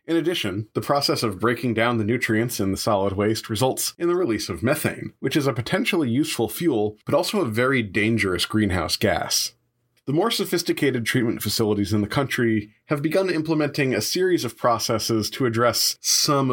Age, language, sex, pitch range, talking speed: 30-49, English, male, 105-135 Hz, 180 wpm